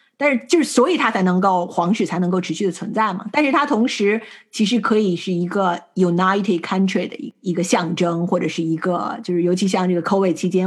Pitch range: 185-230 Hz